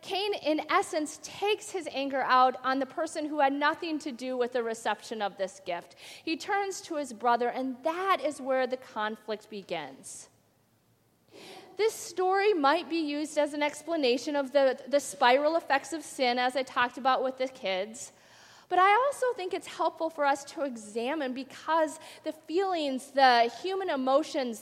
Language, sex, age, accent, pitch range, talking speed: English, female, 40-59, American, 245-335 Hz, 175 wpm